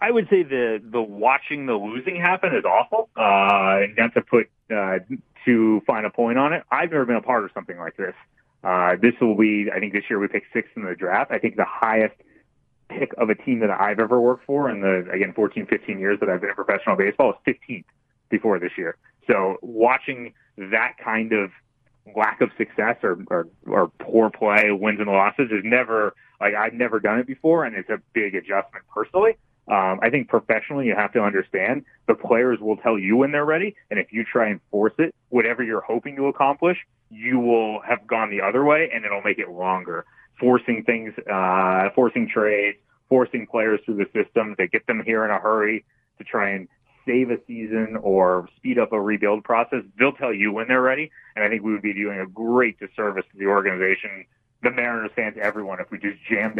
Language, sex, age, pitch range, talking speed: English, male, 30-49, 105-125 Hz, 215 wpm